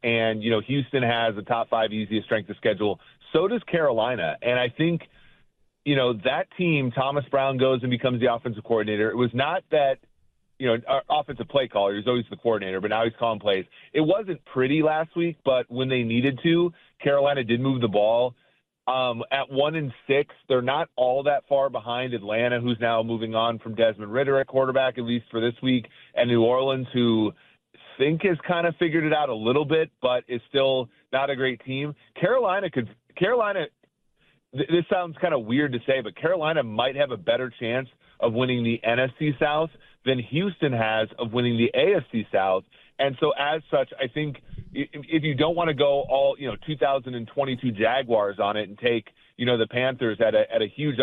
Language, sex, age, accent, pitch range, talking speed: English, male, 30-49, American, 115-140 Hz, 200 wpm